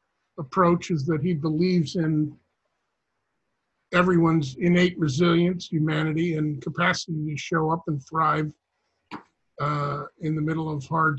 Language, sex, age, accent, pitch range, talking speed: English, male, 50-69, American, 150-180 Hz, 125 wpm